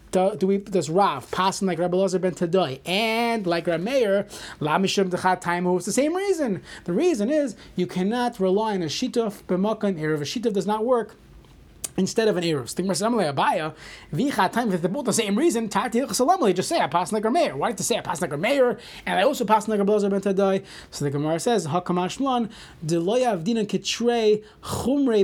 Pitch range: 175-230 Hz